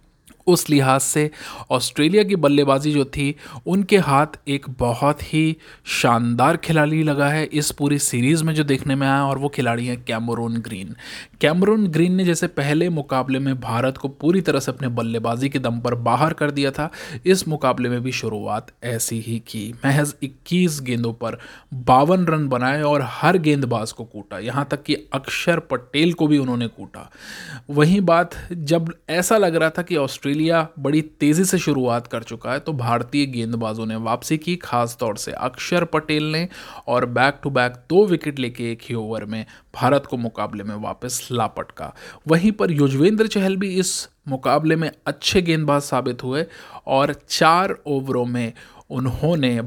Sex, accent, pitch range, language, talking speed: male, native, 125-160 Hz, Hindi, 175 wpm